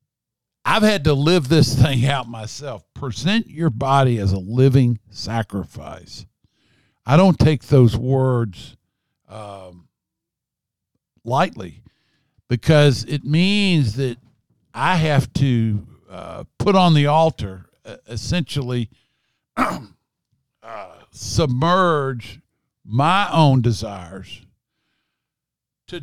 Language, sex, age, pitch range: English, male, 50-69, 105-135 Hz